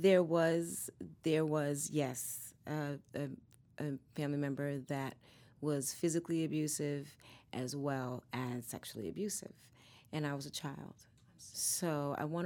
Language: English